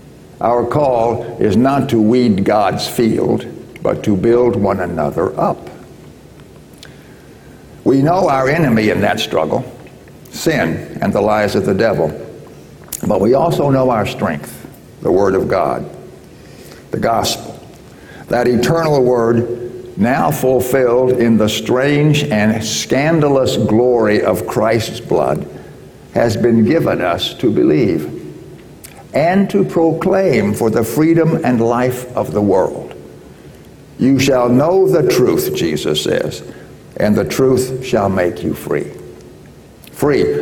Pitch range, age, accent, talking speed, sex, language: 110-135 Hz, 60-79, American, 130 wpm, male, English